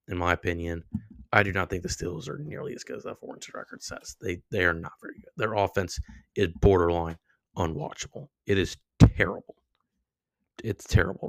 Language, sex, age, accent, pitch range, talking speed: English, male, 20-39, American, 85-100 Hz, 180 wpm